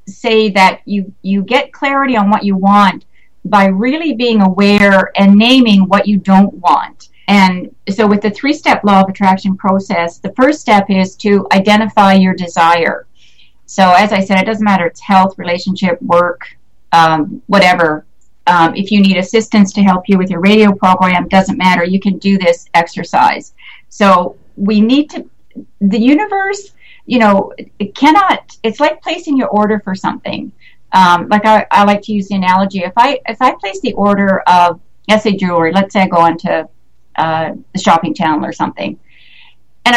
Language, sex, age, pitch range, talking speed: English, female, 50-69, 185-220 Hz, 175 wpm